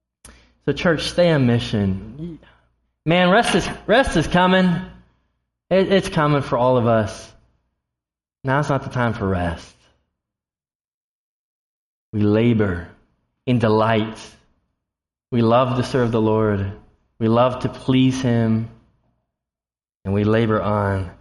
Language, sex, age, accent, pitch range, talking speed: English, male, 20-39, American, 100-145 Hz, 120 wpm